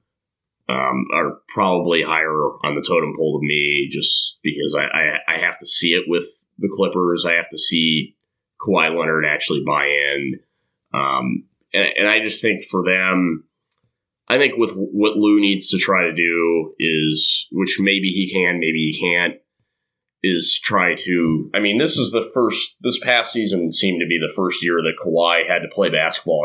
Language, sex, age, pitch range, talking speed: English, male, 30-49, 80-100 Hz, 185 wpm